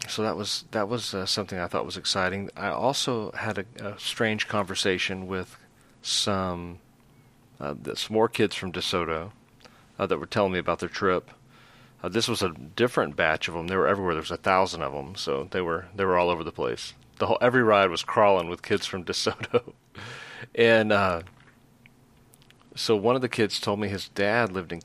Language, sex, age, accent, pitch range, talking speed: English, male, 40-59, American, 95-120 Hz, 205 wpm